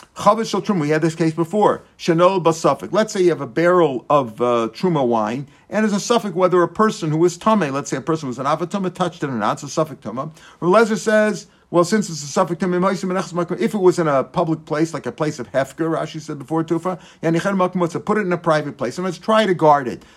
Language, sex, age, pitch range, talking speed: English, male, 50-69, 155-200 Hz, 230 wpm